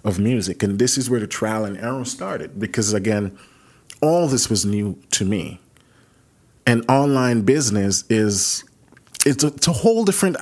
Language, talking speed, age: English, 165 wpm, 30-49